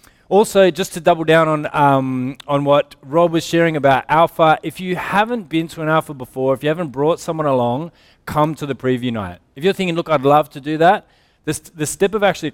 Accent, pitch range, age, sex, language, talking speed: Australian, 120-155 Hz, 20-39, male, English, 225 wpm